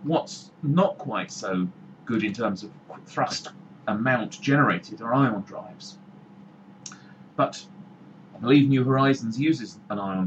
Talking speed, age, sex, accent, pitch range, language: 130 wpm, 40-59, male, British, 110-175 Hz, English